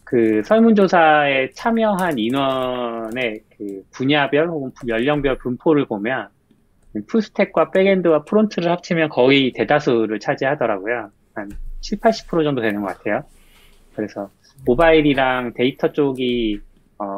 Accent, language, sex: native, Korean, male